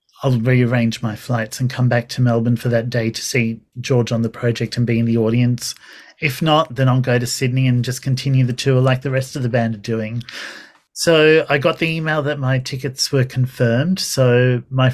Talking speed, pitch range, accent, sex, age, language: 220 wpm, 125-145 Hz, Australian, male, 40-59, English